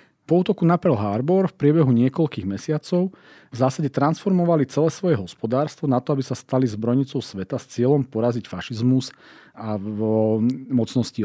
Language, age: Slovak, 40-59